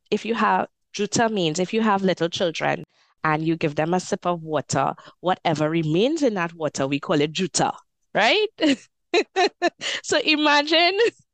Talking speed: 160 wpm